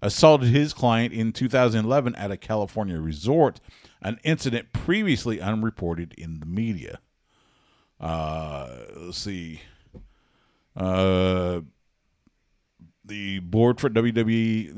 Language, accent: English, American